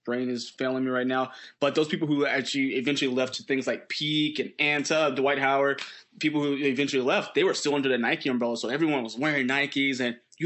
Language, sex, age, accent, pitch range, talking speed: English, male, 20-39, American, 125-150 Hz, 225 wpm